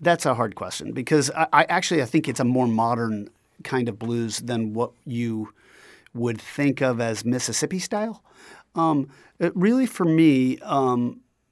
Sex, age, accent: male, 40-59, American